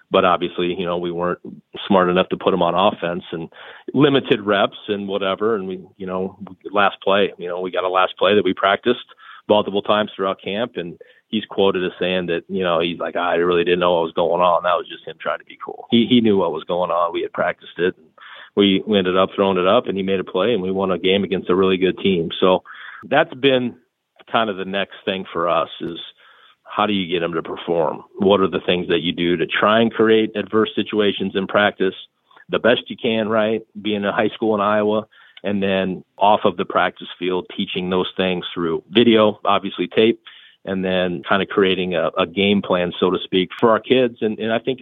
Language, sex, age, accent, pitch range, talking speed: English, male, 40-59, American, 90-110 Hz, 235 wpm